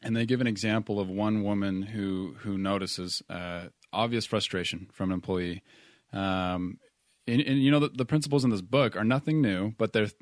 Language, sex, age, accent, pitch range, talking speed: English, male, 20-39, American, 95-120 Hz, 195 wpm